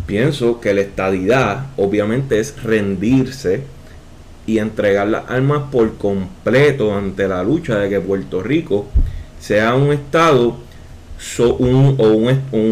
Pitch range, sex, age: 105-145 Hz, male, 30-49